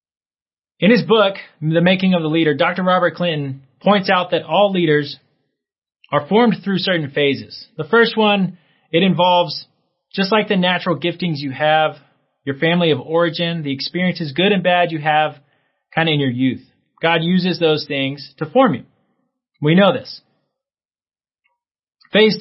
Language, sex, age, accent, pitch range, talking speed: English, male, 30-49, American, 145-190 Hz, 160 wpm